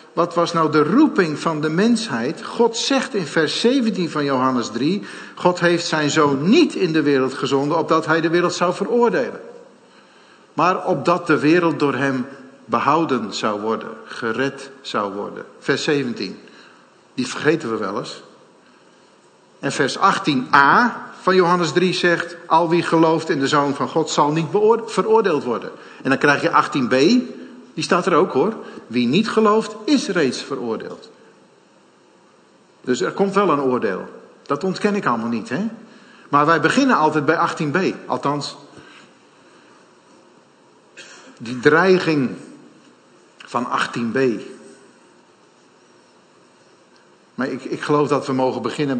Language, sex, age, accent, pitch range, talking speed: Dutch, male, 50-69, Dutch, 140-195 Hz, 140 wpm